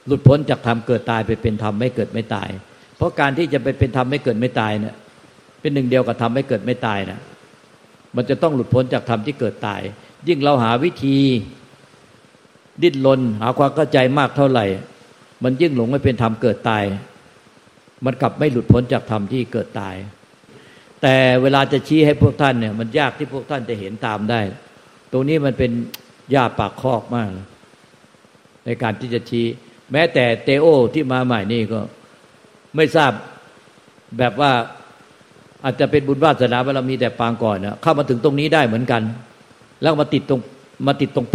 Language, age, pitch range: Thai, 60-79, 115-140 Hz